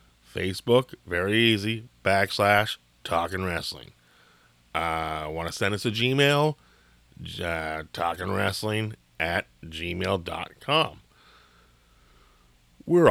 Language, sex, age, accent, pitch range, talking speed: English, male, 30-49, American, 85-115 Hz, 80 wpm